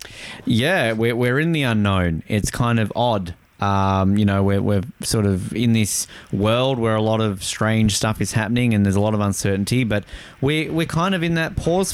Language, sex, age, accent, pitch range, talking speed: English, male, 20-39, Australian, 110-140 Hz, 210 wpm